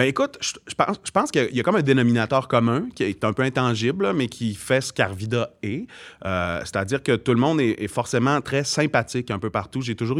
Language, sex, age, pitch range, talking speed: French, male, 30-49, 110-140 Hz, 235 wpm